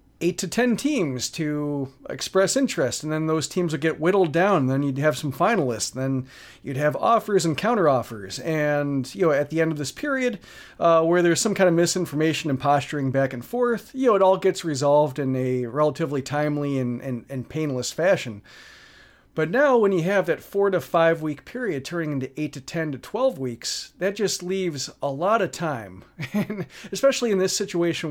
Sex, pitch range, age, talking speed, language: male, 140-185 Hz, 40-59, 200 wpm, English